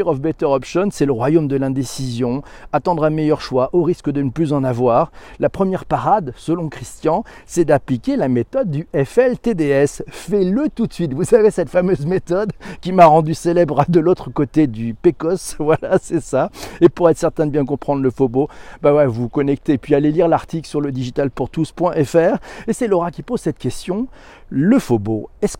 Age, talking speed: 50-69, 190 wpm